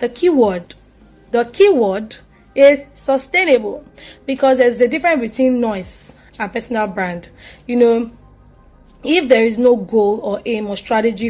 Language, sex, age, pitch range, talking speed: English, female, 20-39, 205-255 Hz, 140 wpm